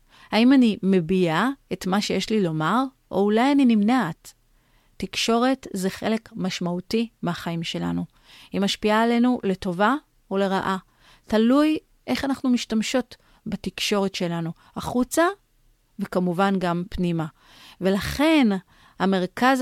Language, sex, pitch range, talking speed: Hebrew, female, 175-220 Hz, 105 wpm